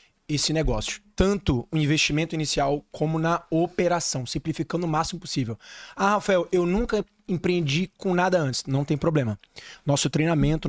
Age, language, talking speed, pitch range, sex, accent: 20-39, Portuguese, 145 wpm, 135-175 Hz, male, Brazilian